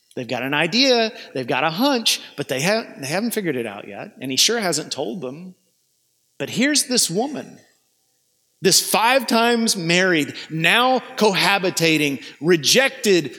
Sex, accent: male, American